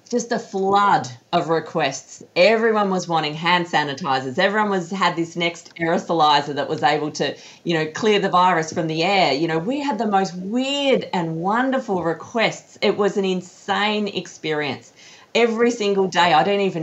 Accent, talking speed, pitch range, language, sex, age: Australian, 175 wpm, 150-195 Hz, English, female, 40-59